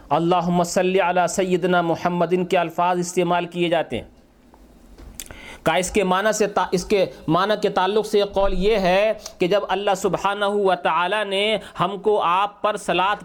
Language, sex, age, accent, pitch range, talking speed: English, male, 50-69, Indian, 185-250 Hz, 155 wpm